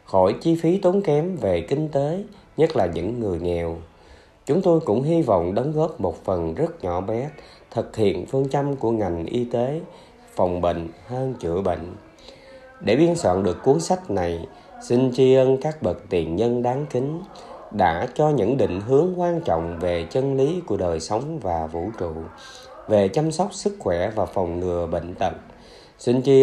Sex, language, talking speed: male, Vietnamese, 185 wpm